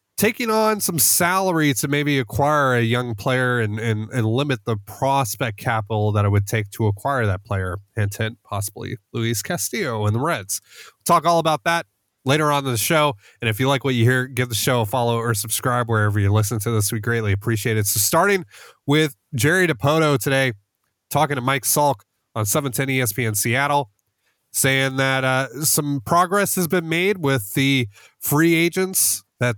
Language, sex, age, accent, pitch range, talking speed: English, male, 30-49, American, 110-150 Hz, 185 wpm